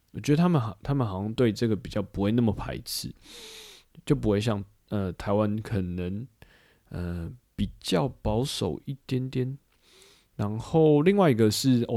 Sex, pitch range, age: male, 95-125 Hz, 20-39